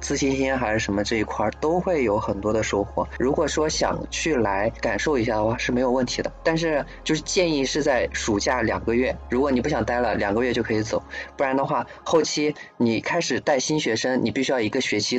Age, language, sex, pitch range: 20-39, Chinese, male, 110-165 Hz